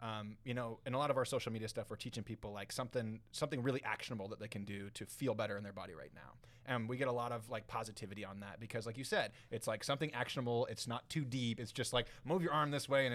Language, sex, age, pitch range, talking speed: English, male, 30-49, 110-135 Hz, 285 wpm